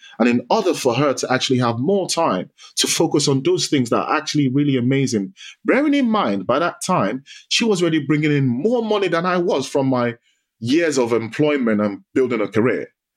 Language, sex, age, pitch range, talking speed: English, male, 30-49, 125-190 Hz, 205 wpm